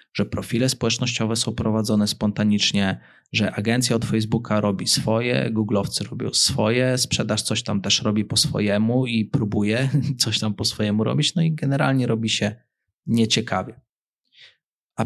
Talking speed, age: 145 wpm, 20-39